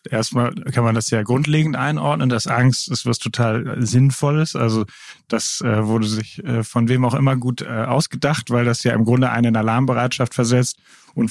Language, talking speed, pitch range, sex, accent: German, 175 wpm, 110-125 Hz, male, German